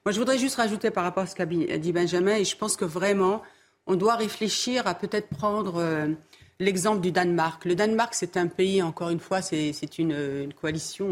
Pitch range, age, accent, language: 195-250 Hz, 50-69, French, French